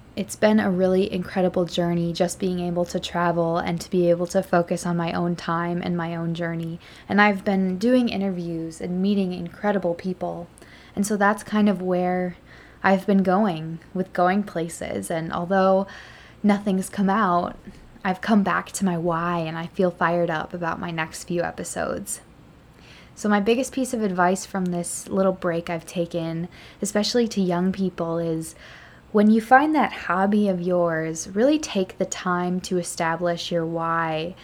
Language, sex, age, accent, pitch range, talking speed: English, female, 20-39, American, 170-200 Hz, 175 wpm